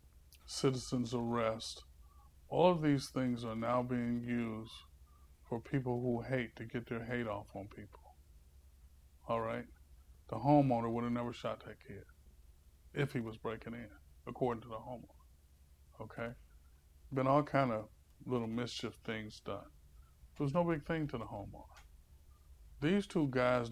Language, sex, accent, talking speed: English, male, American, 150 wpm